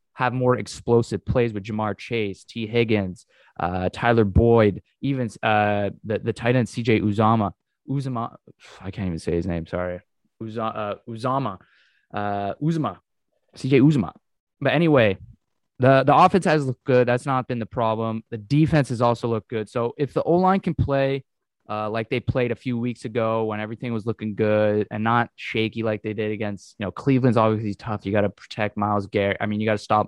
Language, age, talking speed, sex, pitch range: English, 20-39, 195 wpm, male, 105-125 Hz